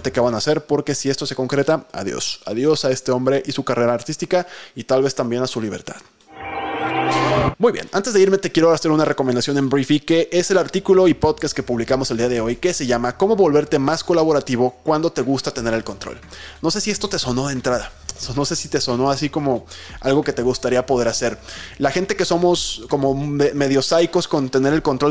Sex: male